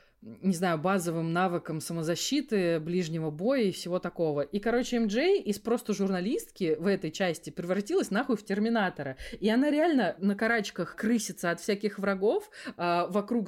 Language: Russian